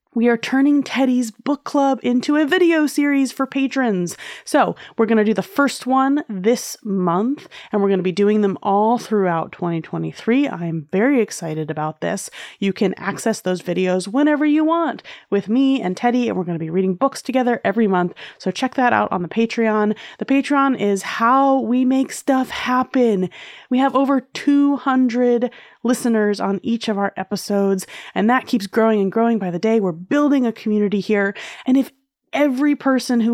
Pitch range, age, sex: 195-255 Hz, 30-49, female